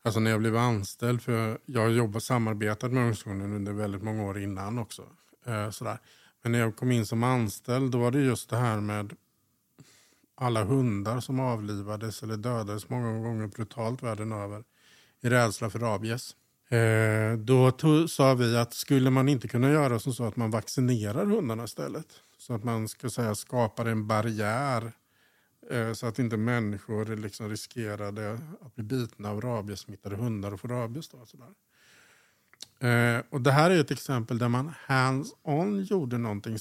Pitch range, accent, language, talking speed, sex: 110-125 Hz, Norwegian, Swedish, 170 wpm, male